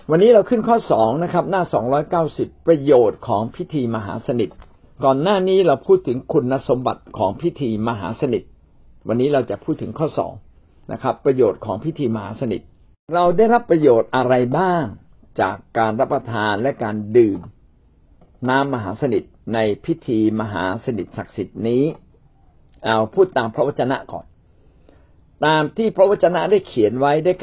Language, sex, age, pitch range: Thai, male, 60-79, 105-155 Hz